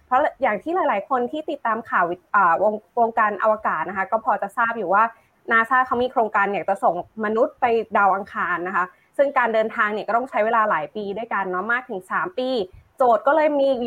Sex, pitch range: female, 215-275 Hz